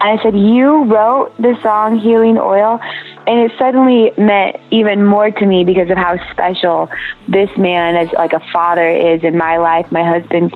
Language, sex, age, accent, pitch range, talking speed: English, female, 20-39, American, 170-205 Hz, 190 wpm